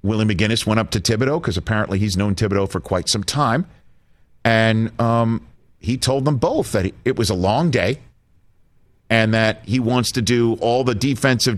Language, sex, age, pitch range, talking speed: English, male, 50-69, 110-150 Hz, 185 wpm